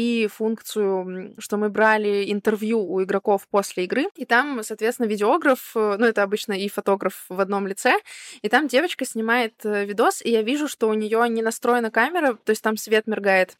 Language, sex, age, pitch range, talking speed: Russian, female, 20-39, 205-240 Hz, 180 wpm